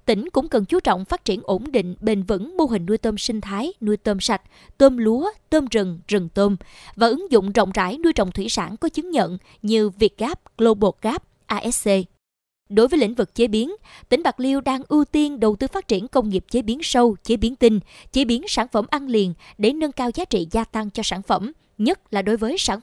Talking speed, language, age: 230 wpm, Vietnamese, 20-39